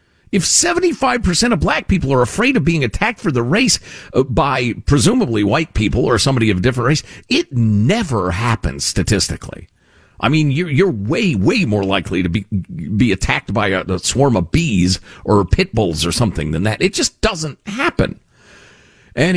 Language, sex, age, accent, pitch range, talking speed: English, male, 50-69, American, 100-160 Hz, 165 wpm